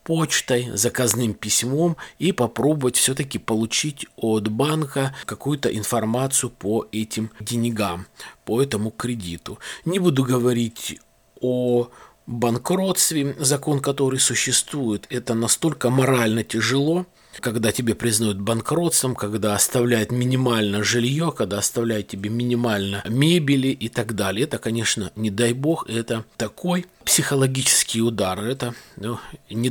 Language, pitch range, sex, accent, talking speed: Russian, 110-135 Hz, male, native, 115 wpm